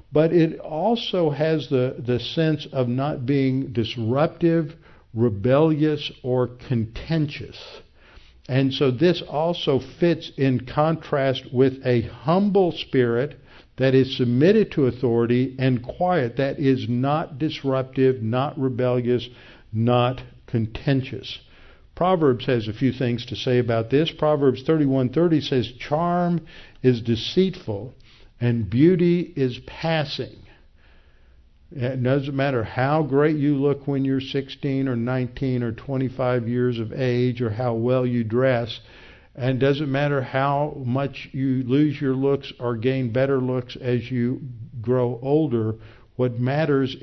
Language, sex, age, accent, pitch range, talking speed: English, male, 60-79, American, 120-145 Hz, 130 wpm